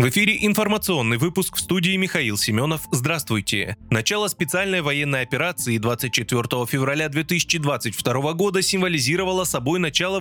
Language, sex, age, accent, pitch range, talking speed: Russian, male, 20-39, native, 125-185 Hz, 120 wpm